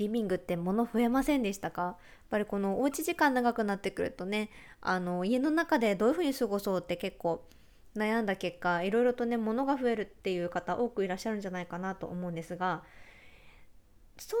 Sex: female